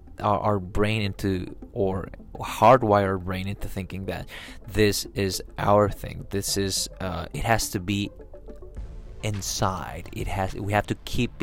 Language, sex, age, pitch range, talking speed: English, male, 20-39, 95-110 Hz, 145 wpm